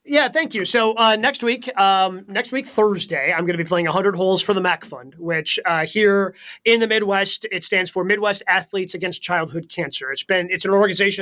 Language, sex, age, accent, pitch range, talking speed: English, male, 30-49, American, 180-210 Hz, 220 wpm